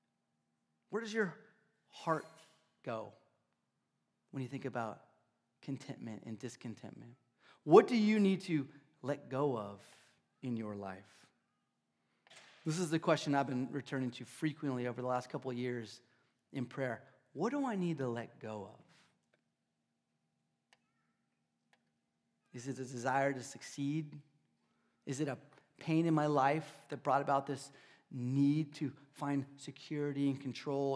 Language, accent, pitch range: English, American, 115-150 Hz